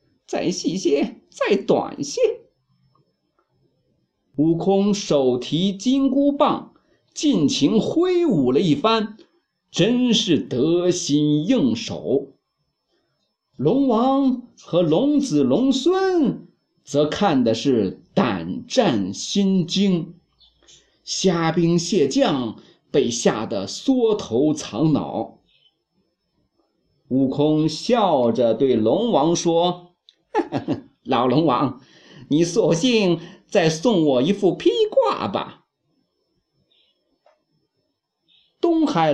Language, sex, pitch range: Chinese, male, 170-275 Hz